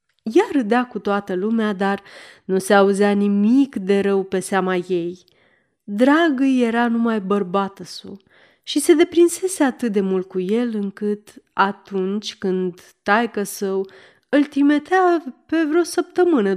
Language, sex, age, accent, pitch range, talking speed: Romanian, female, 30-49, native, 195-265 Hz, 135 wpm